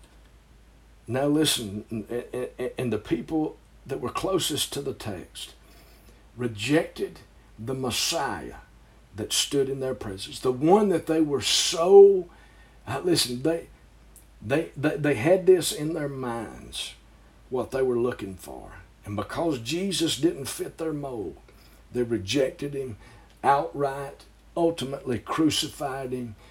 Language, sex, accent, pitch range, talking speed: English, male, American, 120-165 Hz, 120 wpm